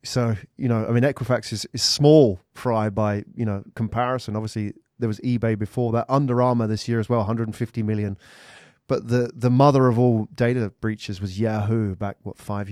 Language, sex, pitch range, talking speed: English, male, 105-125 Hz, 195 wpm